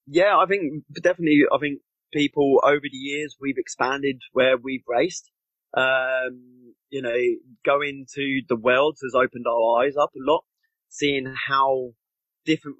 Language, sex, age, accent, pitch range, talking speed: English, male, 20-39, British, 120-145 Hz, 150 wpm